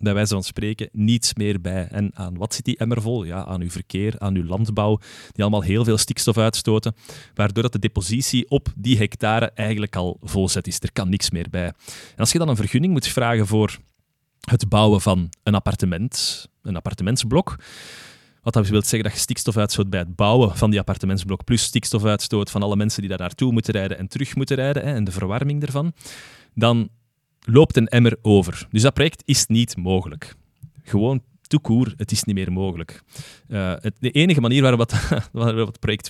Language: Dutch